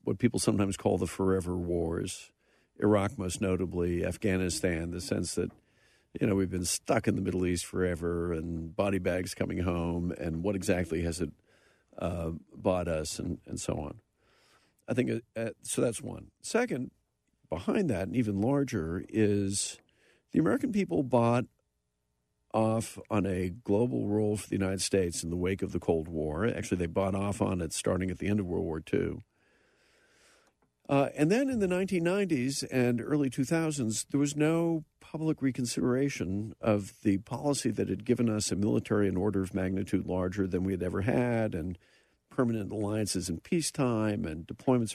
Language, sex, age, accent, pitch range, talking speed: English, male, 50-69, American, 90-120 Hz, 170 wpm